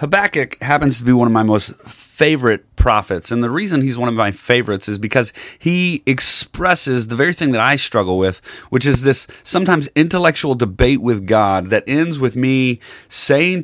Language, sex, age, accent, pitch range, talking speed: English, male, 30-49, American, 125-160 Hz, 185 wpm